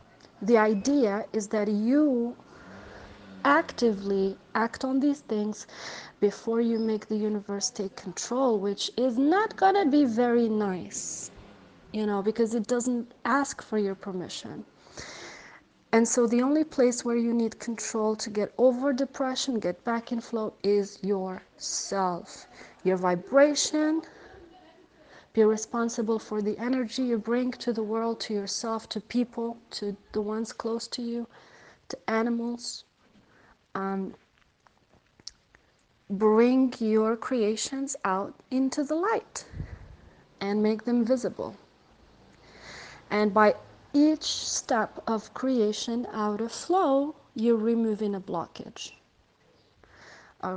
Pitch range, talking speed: 210-255 Hz, 120 wpm